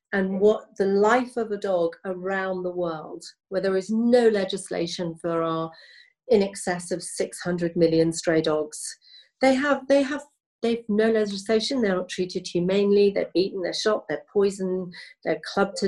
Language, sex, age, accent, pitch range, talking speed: English, female, 40-59, British, 170-200 Hz, 170 wpm